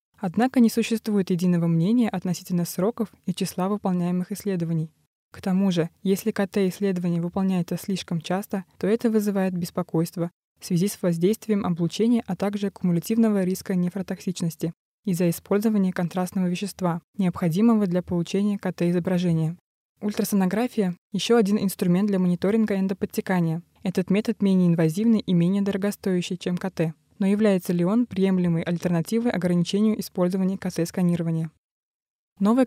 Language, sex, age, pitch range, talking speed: Russian, female, 20-39, 175-205 Hz, 125 wpm